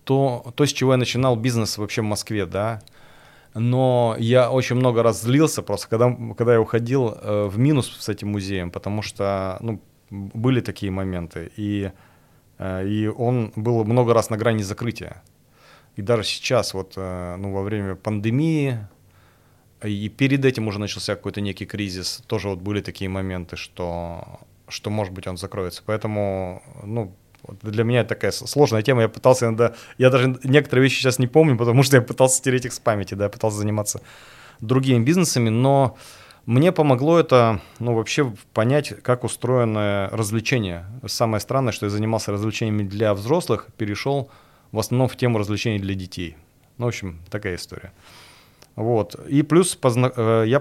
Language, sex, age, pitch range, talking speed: Russian, male, 30-49, 100-125 Hz, 160 wpm